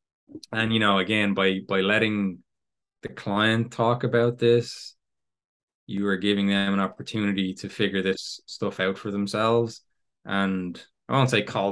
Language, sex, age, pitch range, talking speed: English, male, 20-39, 95-110 Hz, 155 wpm